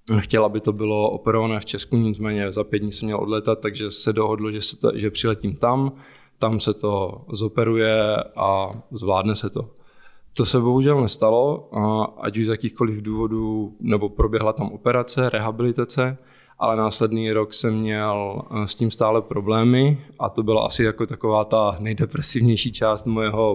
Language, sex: Czech, male